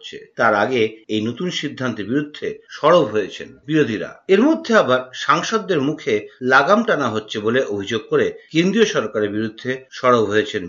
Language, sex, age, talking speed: Bengali, male, 50-69, 140 wpm